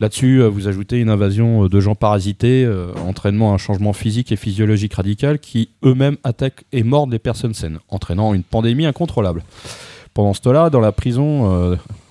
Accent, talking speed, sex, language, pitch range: French, 175 wpm, male, French, 100-125 Hz